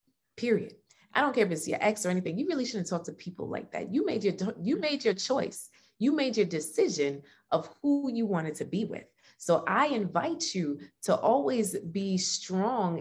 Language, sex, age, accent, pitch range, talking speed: English, female, 20-39, American, 155-215 Hz, 205 wpm